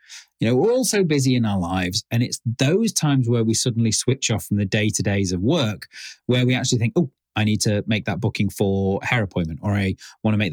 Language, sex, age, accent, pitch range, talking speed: English, male, 30-49, British, 105-140 Hz, 240 wpm